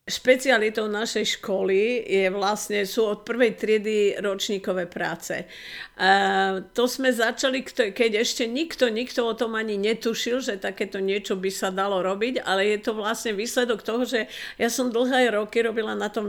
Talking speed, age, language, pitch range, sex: 160 wpm, 50-69, Slovak, 190-225 Hz, female